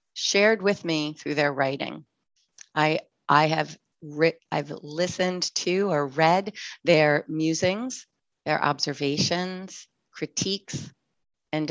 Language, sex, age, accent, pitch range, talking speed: English, female, 40-59, American, 150-185 Hz, 105 wpm